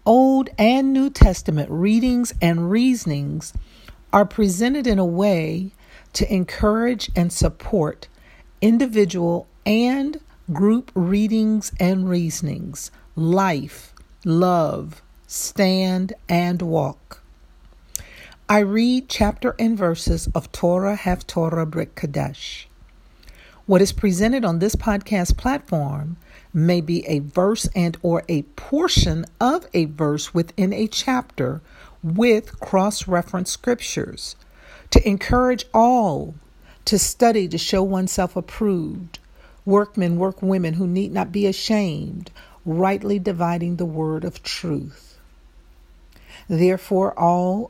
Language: English